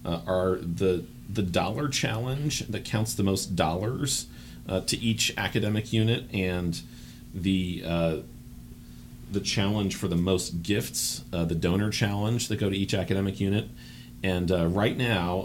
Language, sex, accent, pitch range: English, male, American, 80-95 Hz